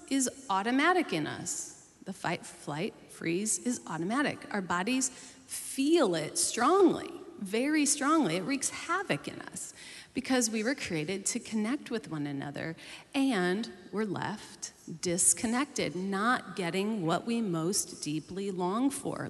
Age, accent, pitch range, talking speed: 30-49, American, 185-265 Hz, 135 wpm